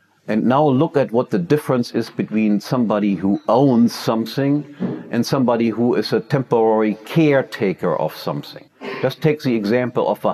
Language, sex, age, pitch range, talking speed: English, male, 70-89, 110-140 Hz, 165 wpm